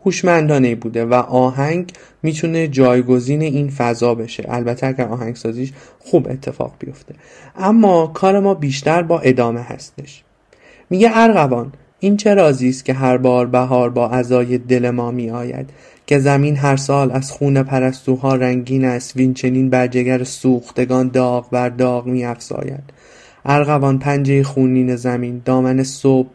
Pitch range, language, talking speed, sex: 125-140 Hz, Persian, 145 wpm, male